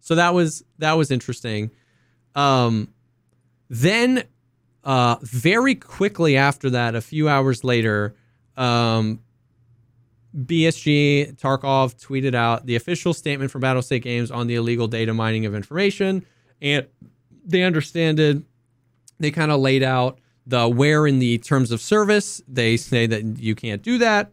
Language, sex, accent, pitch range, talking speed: English, male, American, 120-155 Hz, 145 wpm